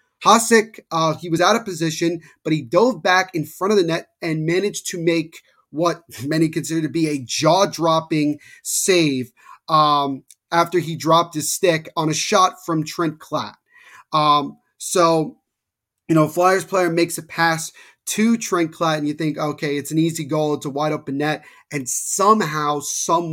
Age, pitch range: 30-49, 145-170 Hz